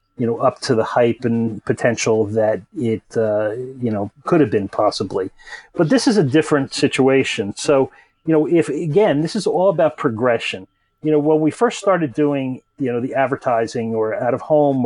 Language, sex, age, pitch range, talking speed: English, male, 40-59, 125-155 Hz, 195 wpm